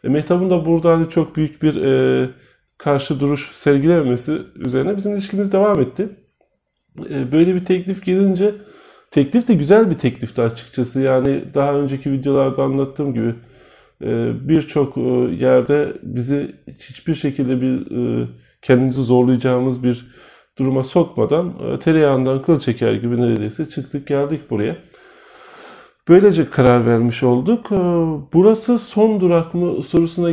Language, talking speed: Turkish, 130 wpm